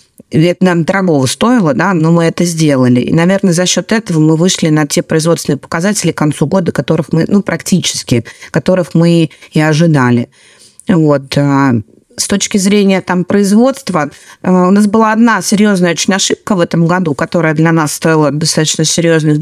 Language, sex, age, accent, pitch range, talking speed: Russian, female, 30-49, native, 165-205 Hz, 165 wpm